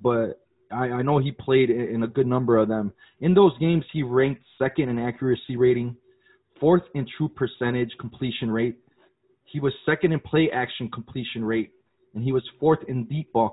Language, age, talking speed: English, 20-39, 185 wpm